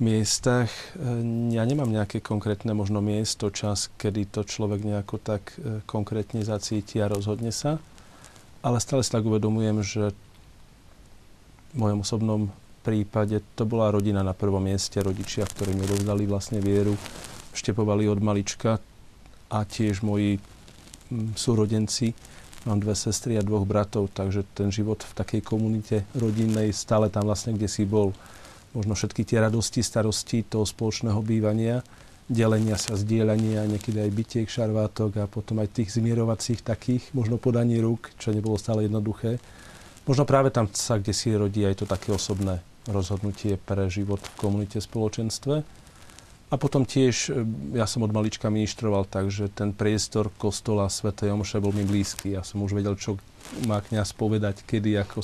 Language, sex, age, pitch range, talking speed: Slovak, male, 40-59, 100-115 Hz, 150 wpm